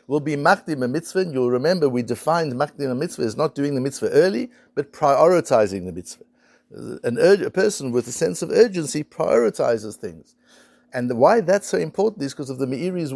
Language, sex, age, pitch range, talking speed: English, male, 60-79, 125-190 Hz, 200 wpm